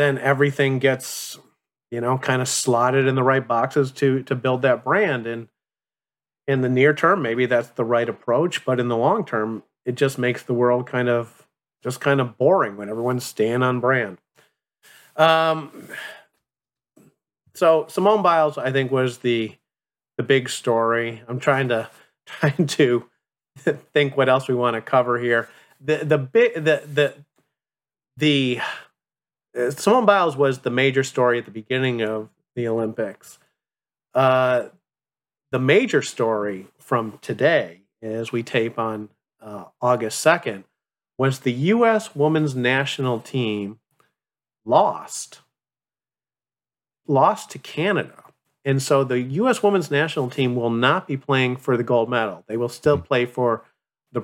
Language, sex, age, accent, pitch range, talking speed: English, male, 30-49, American, 120-145 Hz, 150 wpm